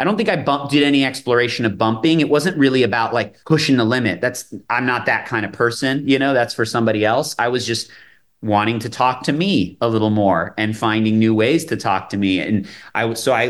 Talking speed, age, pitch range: 235 wpm, 30-49, 110-140 Hz